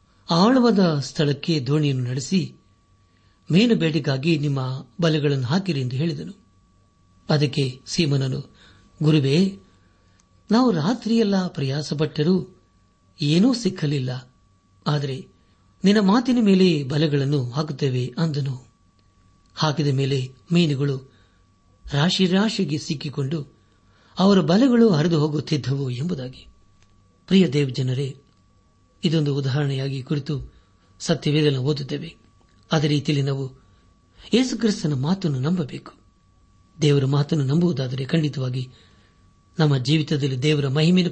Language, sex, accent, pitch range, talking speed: Kannada, male, native, 105-160 Hz, 85 wpm